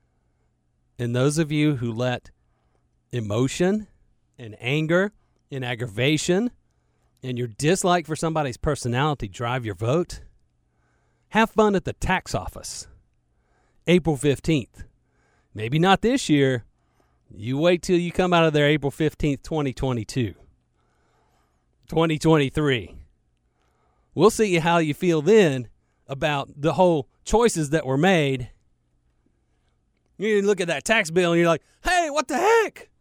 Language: English